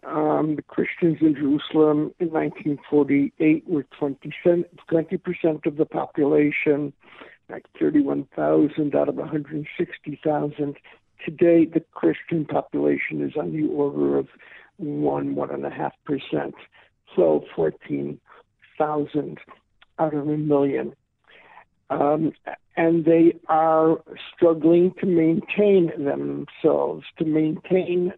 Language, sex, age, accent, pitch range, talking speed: English, male, 60-79, American, 145-170 Hz, 95 wpm